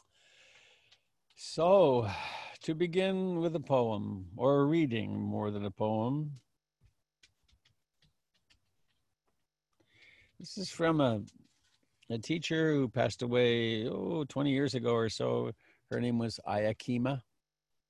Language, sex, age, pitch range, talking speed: English, male, 60-79, 105-155 Hz, 105 wpm